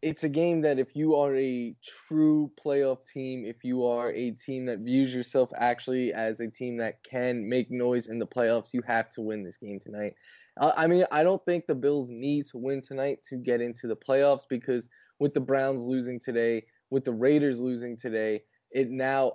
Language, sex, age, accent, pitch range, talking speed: English, male, 10-29, American, 120-135 Hz, 205 wpm